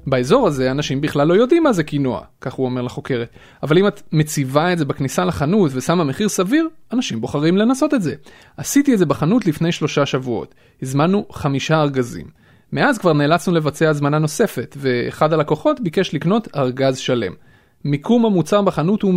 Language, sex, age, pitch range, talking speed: Hebrew, male, 30-49, 140-190 Hz, 170 wpm